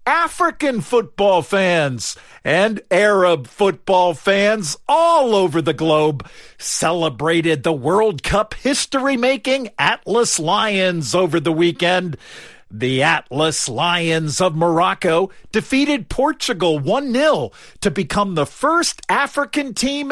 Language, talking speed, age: English, 105 wpm, 50-69